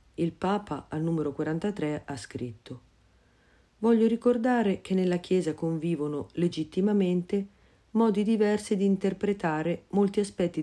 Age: 50-69